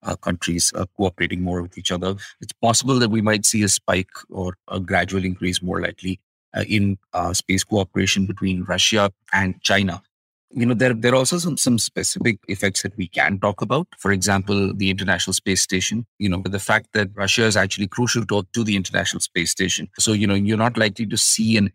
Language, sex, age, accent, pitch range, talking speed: English, male, 30-49, Indian, 95-105 Hz, 210 wpm